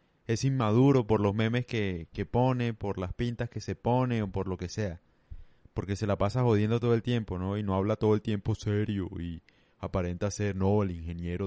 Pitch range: 95-115 Hz